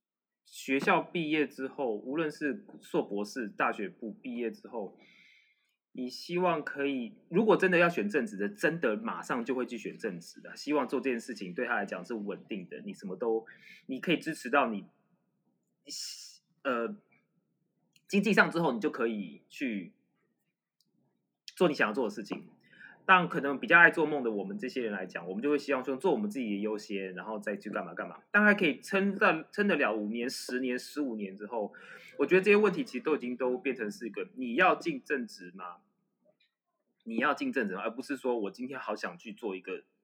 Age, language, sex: 20-39, Chinese, male